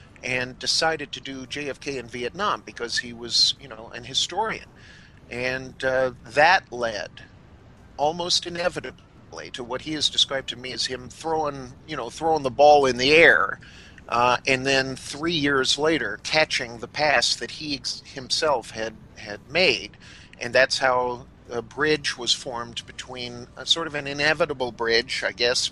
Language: English